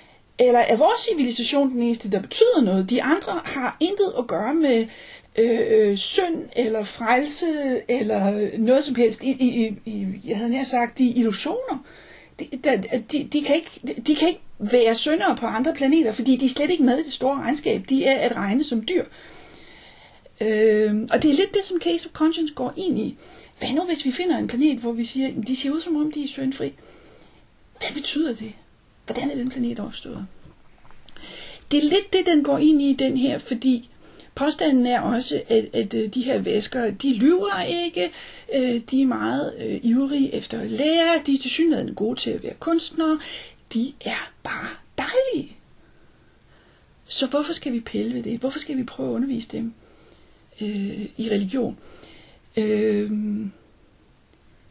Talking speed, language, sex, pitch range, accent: 175 wpm, Danish, female, 230-300 Hz, native